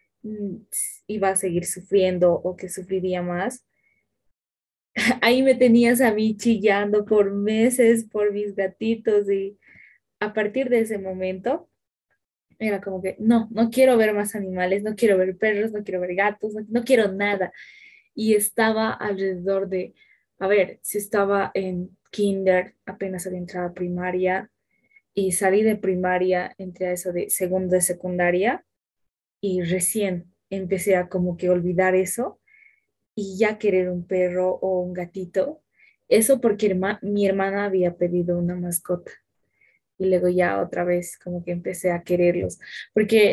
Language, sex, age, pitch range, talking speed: Spanish, female, 10-29, 185-220 Hz, 150 wpm